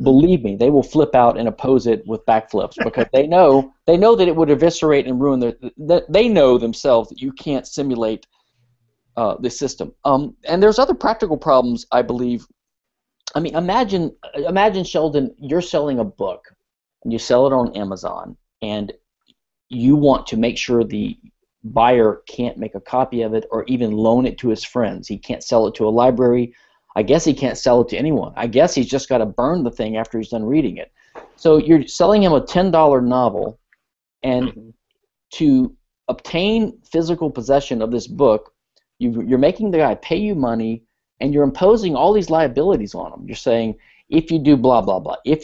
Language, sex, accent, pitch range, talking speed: English, male, American, 120-165 Hz, 195 wpm